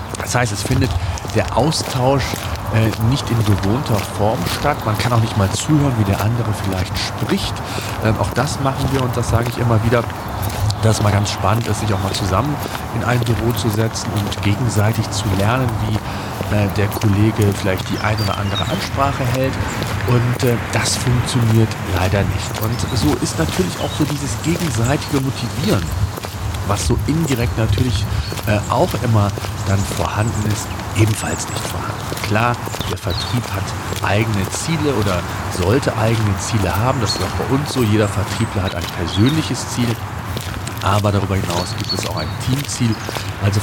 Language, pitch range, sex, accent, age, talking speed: German, 100-115 Hz, male, German, 40-59, 170 wpm